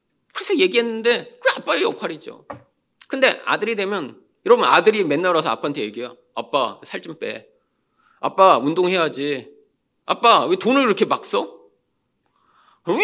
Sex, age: male, 40-59